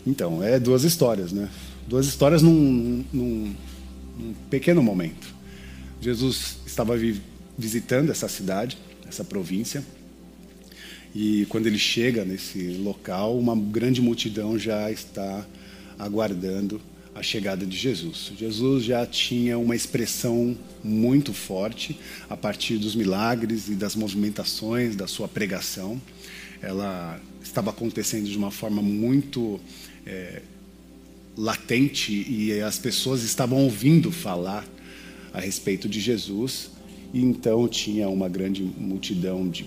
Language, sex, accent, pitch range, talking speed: Portuguese, male, Brazilian, 95-120 Hz, 115 wpm